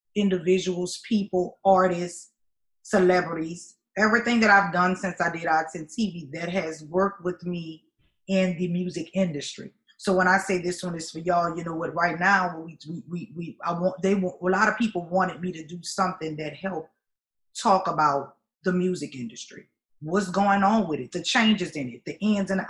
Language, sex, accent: English, female, American